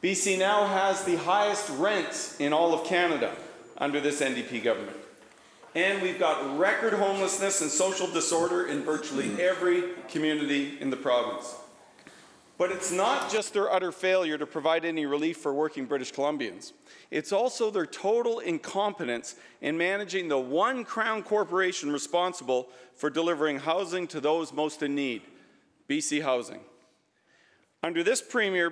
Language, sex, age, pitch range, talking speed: English, male, 40-59, 150-195 Hz, 145 wpm